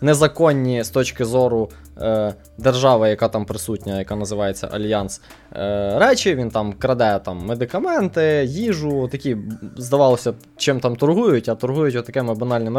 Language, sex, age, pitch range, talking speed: Ukrainian, male, 20-39, 115-155 Hz, 135 wpm